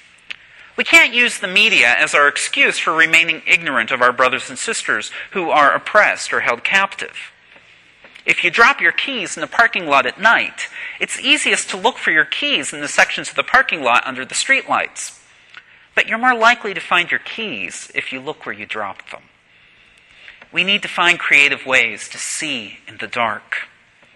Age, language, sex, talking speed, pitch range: 40-59, English, male, 190 wpm, 145-225 Hz